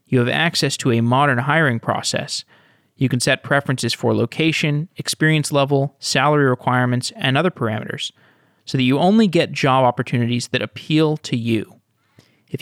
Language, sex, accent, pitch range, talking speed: English, male, American, 125-155 Hz, 155 wpm